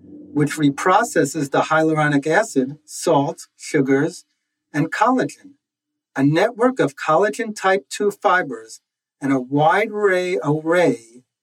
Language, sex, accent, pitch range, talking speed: English, male, American, 140-205 Hz, 105 wpm